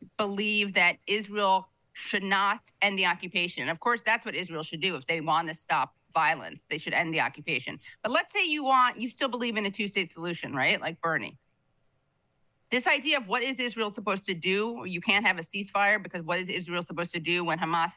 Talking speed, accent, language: 215 wpm, American, English